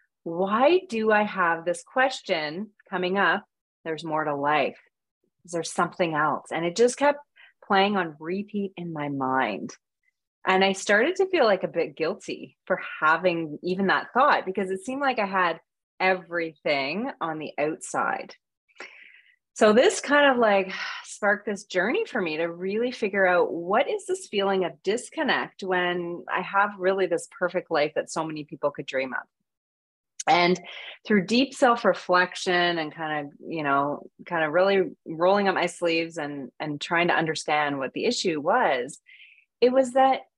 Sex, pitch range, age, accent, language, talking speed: female, 160-225 Hz, 30-49, American, English, 165 wpm